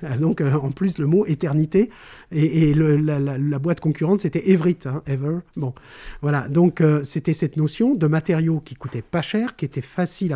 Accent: French